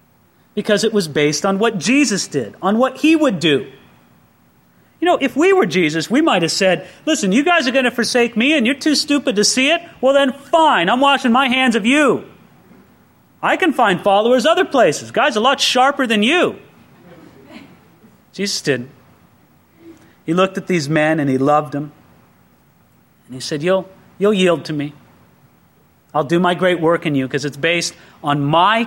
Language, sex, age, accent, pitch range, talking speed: English, male, 30-49, American, 150-235 Hz, 185 wpm